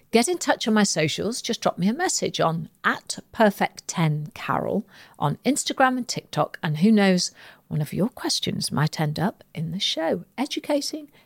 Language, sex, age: English, female, 50-69